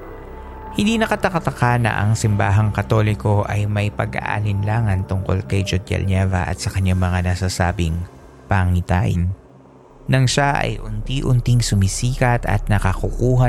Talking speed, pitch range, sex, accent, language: 115 wpm, 95-125 Hz, male, native, Filipino